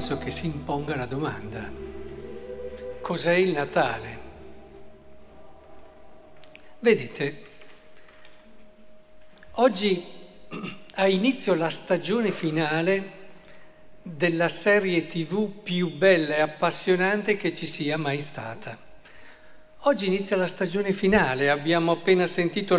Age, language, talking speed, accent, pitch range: 60-79, Italian, 90 wpm, native, 160-195 Hz